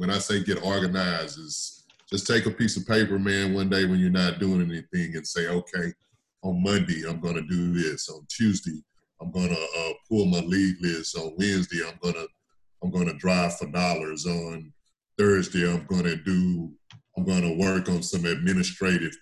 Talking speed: 180 wpm